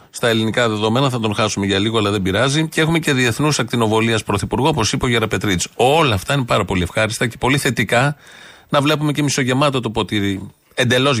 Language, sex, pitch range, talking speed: Greek, male, 105-130 Hz, 200 wpm